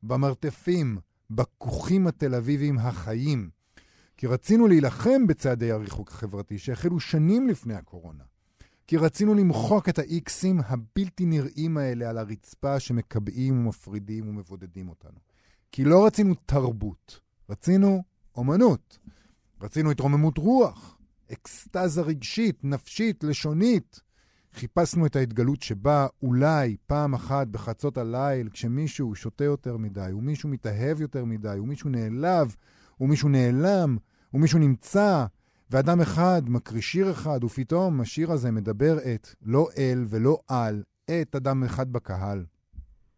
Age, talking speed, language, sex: 50-69, 115 wpm, Hebrew, male